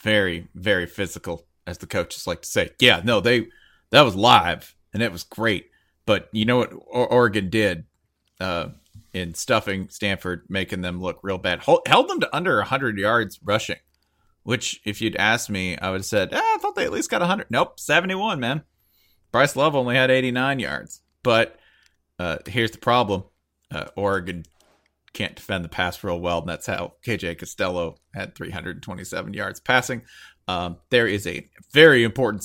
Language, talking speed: English, 180 wpm